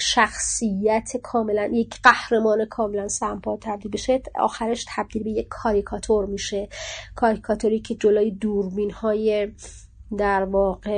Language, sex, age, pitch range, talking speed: Persian, female, 30-49, 205-240 Hz, 115 wpm